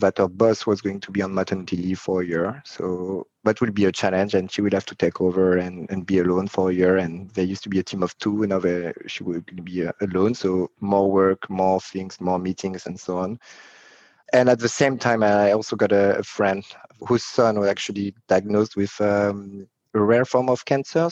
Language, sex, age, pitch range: English, male, 30-49, 95-110 Hz